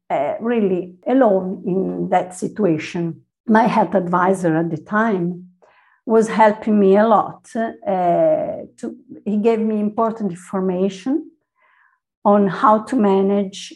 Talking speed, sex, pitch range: 120 wpm, female, 190-240 Hz